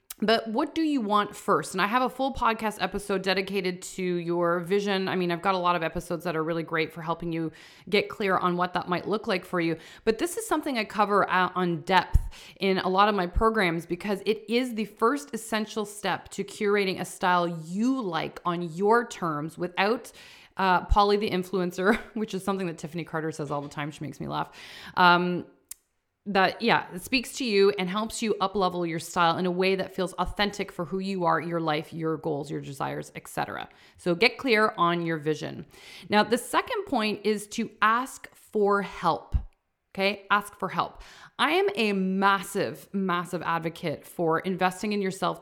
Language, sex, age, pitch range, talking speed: English, female, 30-49, 175-215 Hz, 200 wpm